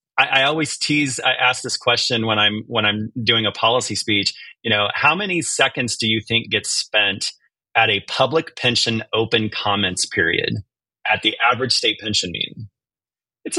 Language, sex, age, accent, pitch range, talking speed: English, male, 30-49, American, 105-130 Hz, 170 wpm